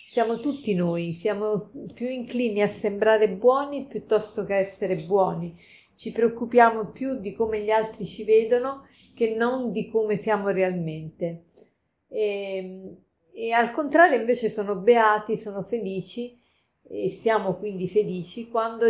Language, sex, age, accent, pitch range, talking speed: Italian, female, 40-59, native, 180-235 Hz, 135 wpm